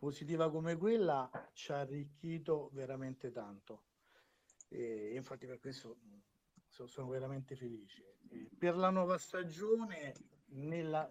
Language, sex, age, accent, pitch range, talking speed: Italian, male, 60-79, native, 140-165 Hz, 110 wpm